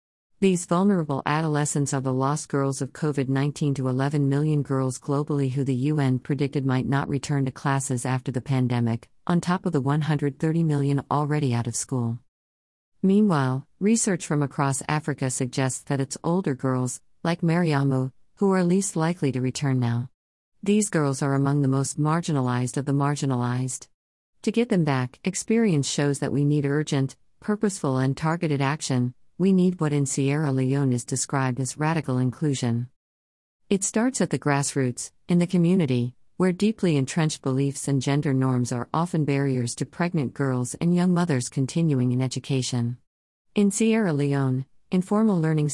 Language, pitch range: English, 130-160 Hz